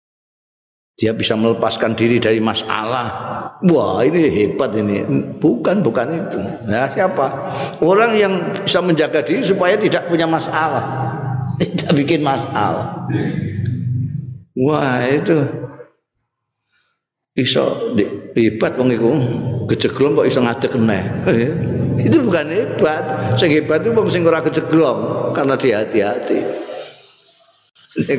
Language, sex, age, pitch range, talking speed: Indonesian, male, 50-69, 120-170 Hz, 105 wpm